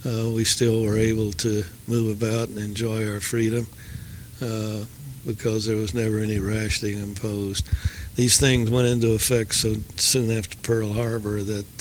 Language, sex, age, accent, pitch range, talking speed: English, male, 60-79, American, 110-120 Hz, 160 wpm